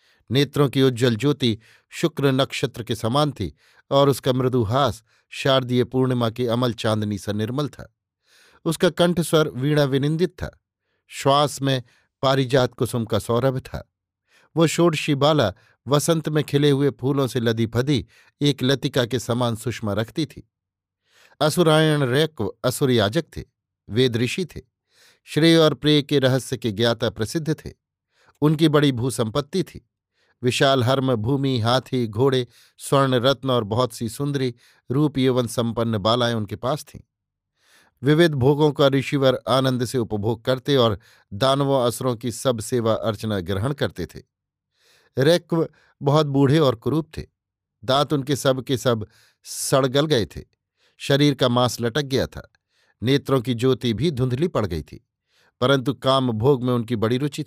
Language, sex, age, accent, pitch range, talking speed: Hindi, male, 50-69, native, 115-145 Hz, 150 wpm